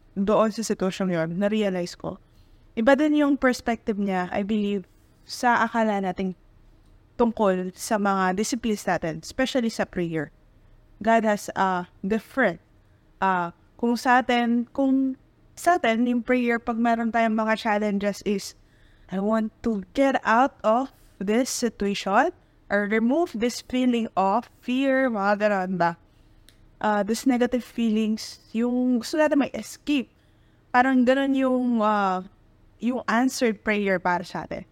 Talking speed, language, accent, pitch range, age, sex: 130 wpm, Filipino, native, 190-250 Hz, 20-39, female